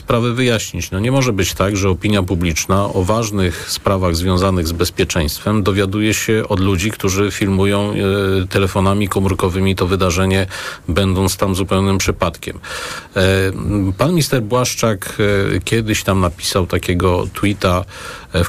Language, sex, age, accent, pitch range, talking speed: Polish, male, 40-59, native, 95-110 Hz, 125 wpm